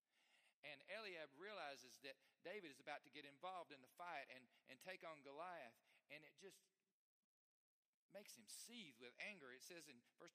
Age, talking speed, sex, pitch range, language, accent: 40-59, 175 wpm, male, 125-165 Hz, English, American